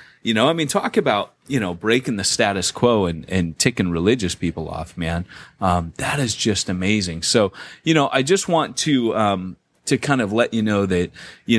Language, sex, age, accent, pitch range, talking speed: English, male, 30-49, American, 90-120 Hz, 205 wpm